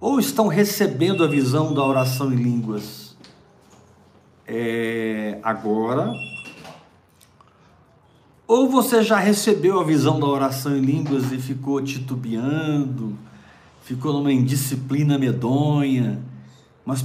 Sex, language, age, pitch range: male, Portuguese, 50-69, 115-140 Hz